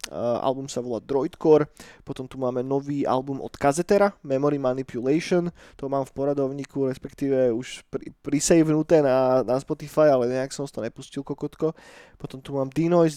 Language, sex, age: Slovak, male, 20-39